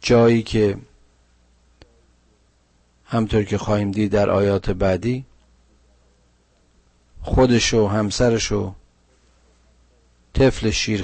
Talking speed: 80 wpm